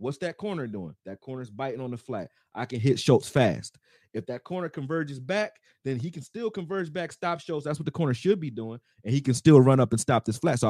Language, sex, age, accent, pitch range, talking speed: English, male, 30-49, American, 110-140 Hz, 260 wpm